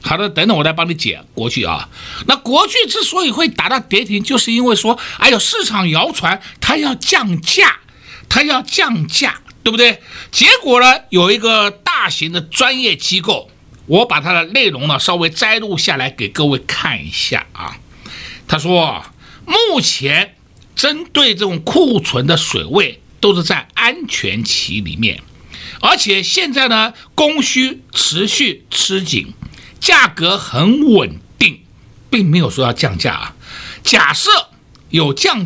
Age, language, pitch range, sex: 60-79, Chinese, 170-255 Hz, male